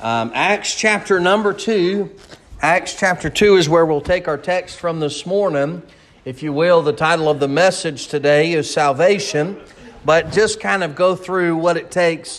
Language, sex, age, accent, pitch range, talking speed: English, male, 40-59, American, 150-195 Hz, 180 wpm